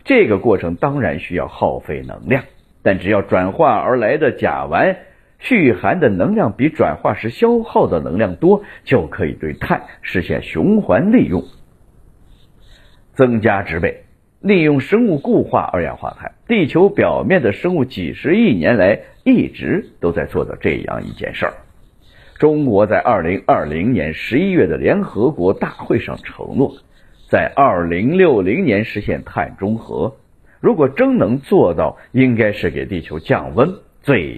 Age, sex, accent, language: 50-69, male, native, Chinese